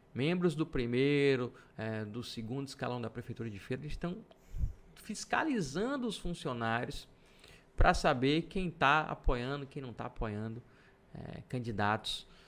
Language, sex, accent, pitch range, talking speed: Portuguese, male, Brazilian, 110-145 Hz, 115 wpm